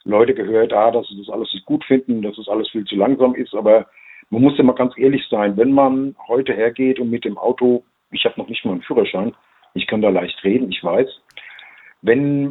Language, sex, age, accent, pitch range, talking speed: German, male, 50-69, German, 115-140 Hz, 230 wpm